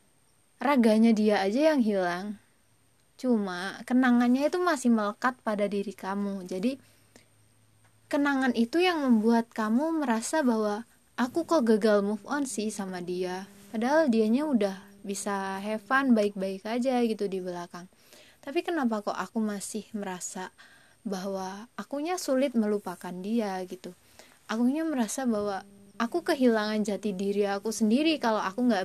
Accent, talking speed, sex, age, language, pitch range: native, 135 wpm, female, 20-39, Indonesian, 200-245 Hz